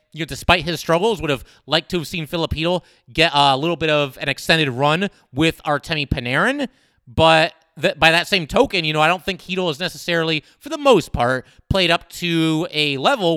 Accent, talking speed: American, 210 wpm